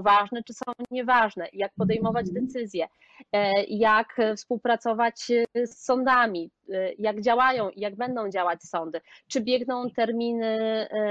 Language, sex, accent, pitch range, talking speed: Polish, female, native, 215-255 Hz, 115 wpm